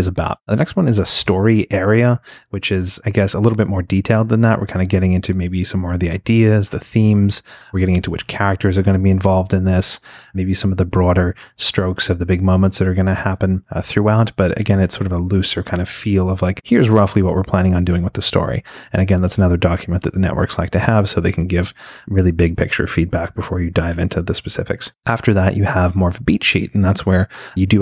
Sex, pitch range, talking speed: male, 90-100 Hz, 265 wpm